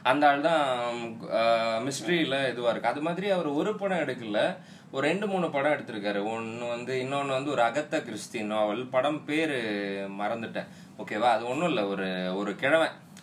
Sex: male